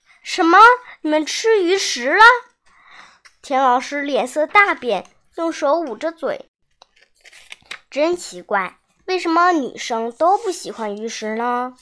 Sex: male